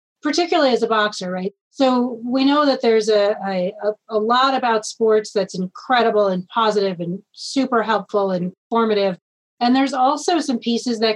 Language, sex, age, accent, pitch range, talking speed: English, female, 30-49, American, 205-240 Hz, 165 wpm